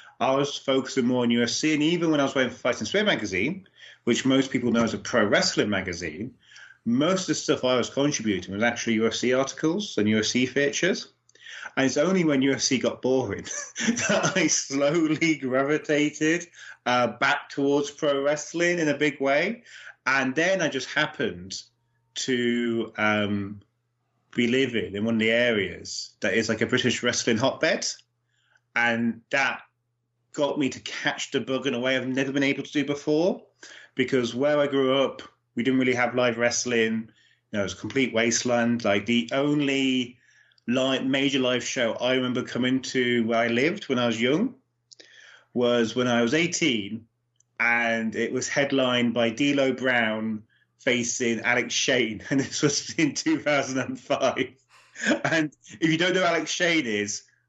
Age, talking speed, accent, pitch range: 30-49, 170 wpm, British, 120-145 Hz